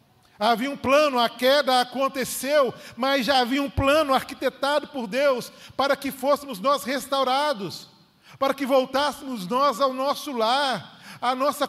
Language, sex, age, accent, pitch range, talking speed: Portuguese, male, 40-59, Brazilian, 170-265 Hz, 145 wpm